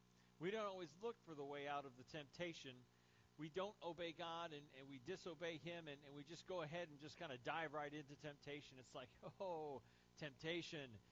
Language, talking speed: English, 205 wpm